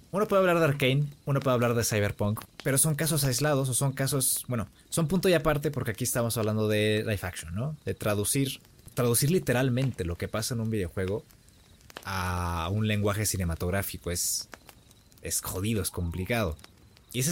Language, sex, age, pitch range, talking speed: Spanish, male, 20-39, 100-135 Hz, 175 wpm